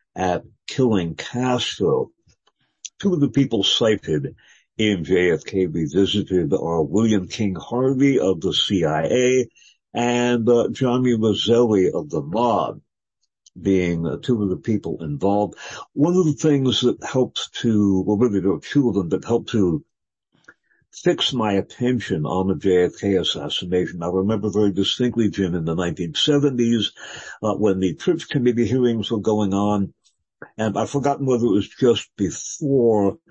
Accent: American